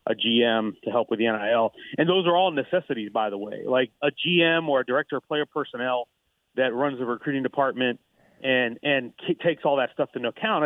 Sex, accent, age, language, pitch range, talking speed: male, American, 40-59, English, 130-165 Hz, 215 wpm